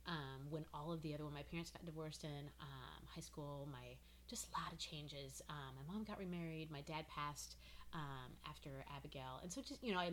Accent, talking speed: American, 225 wpm